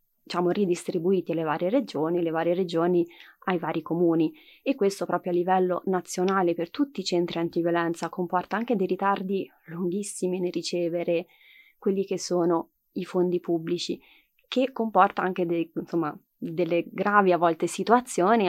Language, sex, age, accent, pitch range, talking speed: Italian, female, 20-39, native, 170-195 Hz, 145 wpm